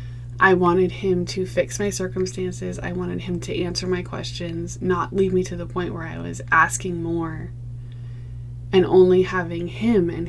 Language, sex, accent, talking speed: English, female, American, 175 wpm